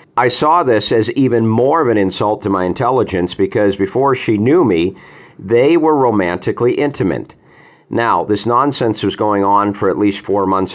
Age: 50-69